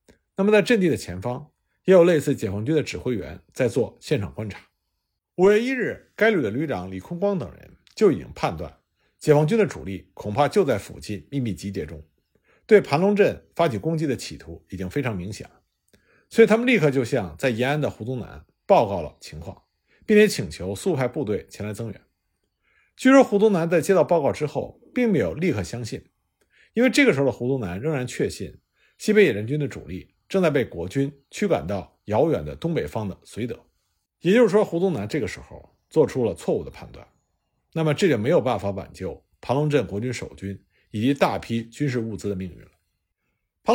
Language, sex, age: Chinese, male, 50-69